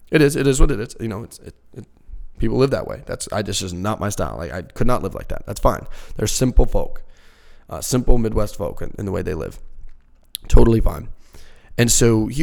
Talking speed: 240 wpm